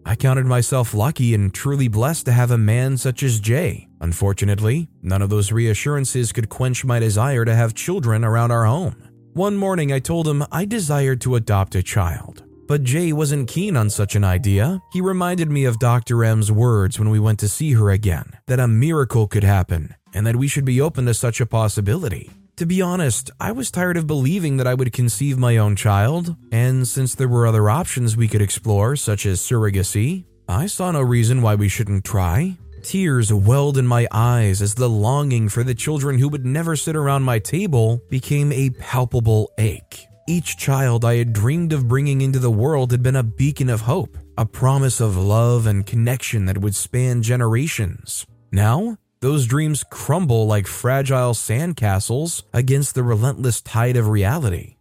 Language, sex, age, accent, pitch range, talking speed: English, male, 20-39, American, 110-140 Hz, 190 wpm